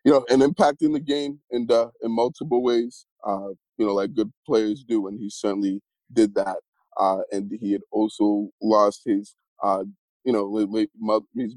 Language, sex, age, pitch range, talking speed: English, male, 20-39, 100-110 Hz, 175 wpm